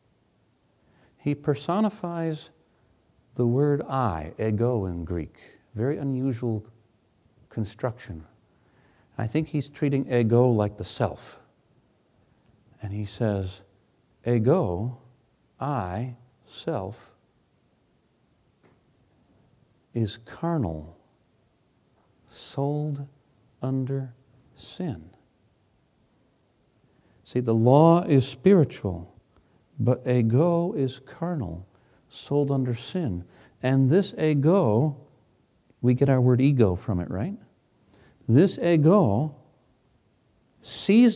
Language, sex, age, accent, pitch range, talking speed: English, male, 60-79, American, 115-145 Hz, 80 wpm